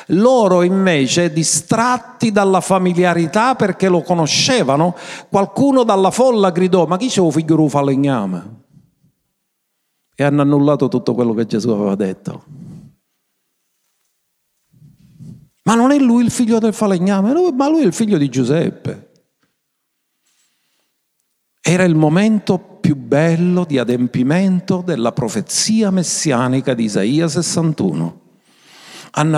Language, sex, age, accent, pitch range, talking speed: Italian, male, 50-69, native, 140-190 Hz, 115 wpm